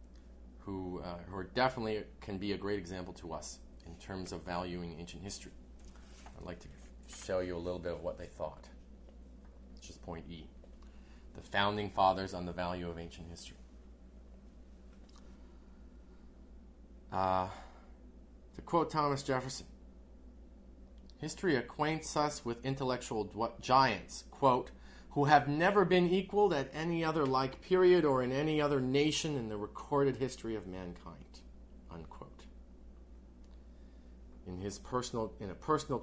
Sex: male